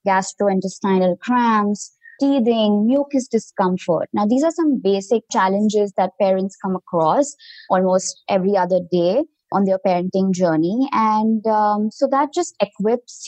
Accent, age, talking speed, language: Indian, 20-39, 130 wpm, English